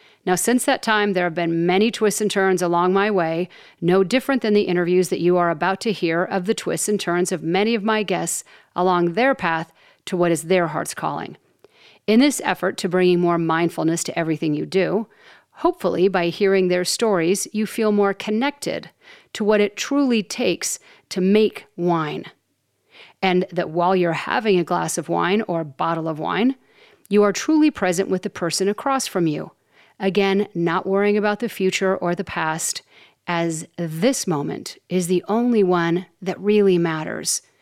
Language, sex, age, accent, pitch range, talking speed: English, female, 40-59, American, 175-215 Hz, 185 wpm